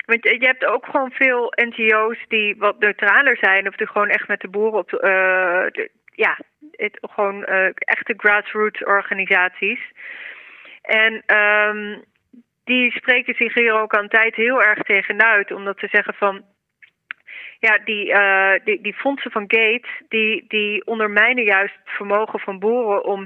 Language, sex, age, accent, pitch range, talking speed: Dutch, female, 20-39, Dutch, 195-240 Hz, 155 wpm